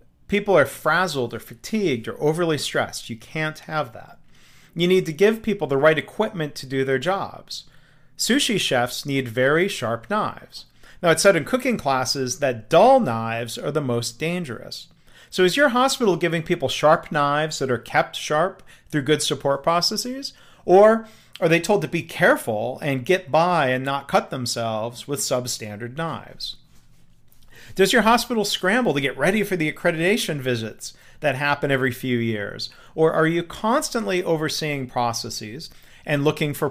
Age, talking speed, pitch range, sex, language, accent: 40-59, 165 wpm, 130-190 Hz, male, English, American